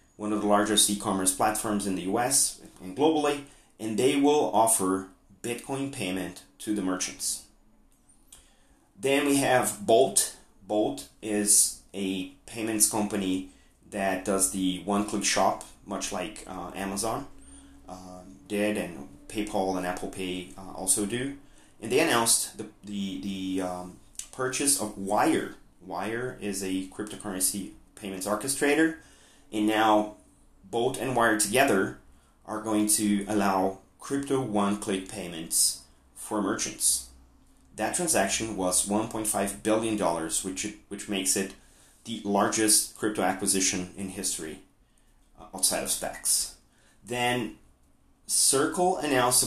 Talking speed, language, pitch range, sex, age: 125 wpm, Portuguese, 95-110 Hz, male, 30-49